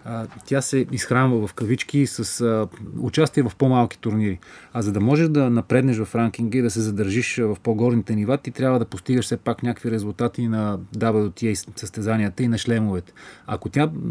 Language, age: Bulgarian, 30-49